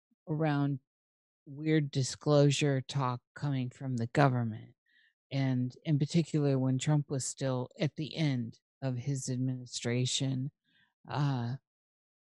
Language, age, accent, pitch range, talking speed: English, 50-69, American, 125-155 Hz, 110 wpm